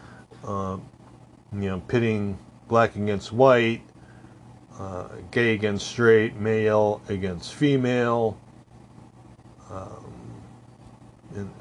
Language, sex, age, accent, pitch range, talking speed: English, male, 40-59, American, 95-110 Hz, 85 wpm